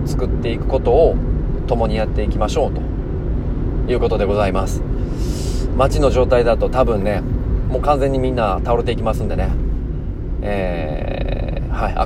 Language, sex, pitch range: Japanese, male, 90-130 Hz